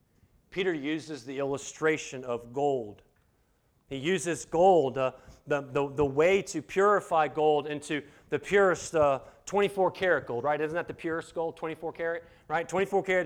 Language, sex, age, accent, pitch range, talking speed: English, male, 40-59, American, 145-185 Hz, 140 wpm